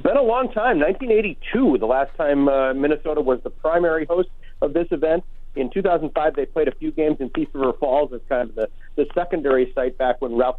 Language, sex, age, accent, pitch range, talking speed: English, male, 50-69, American, 135-190 Hz, 215 wpm